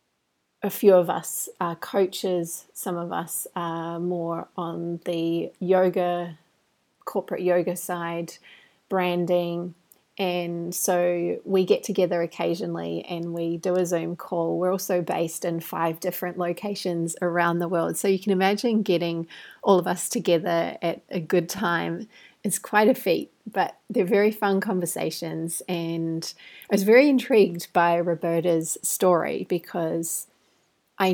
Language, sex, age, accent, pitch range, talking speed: English, female, 30-49, Australian, 170-195 Hz, 140 wpm